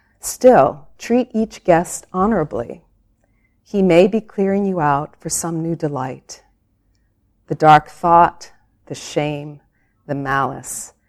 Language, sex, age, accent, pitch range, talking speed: English, female, 40-59, American, 130-175 Hz, 120 wpm